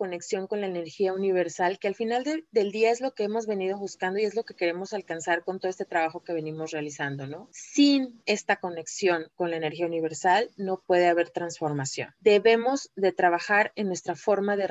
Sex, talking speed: female, 200 wpm